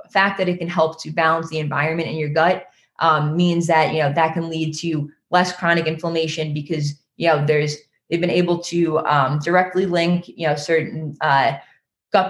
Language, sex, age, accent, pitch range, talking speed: English, female, 20-39, American, 155-175 Hz, 195 wpm